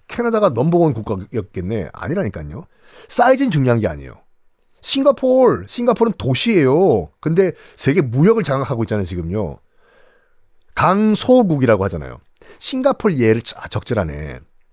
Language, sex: Korean, male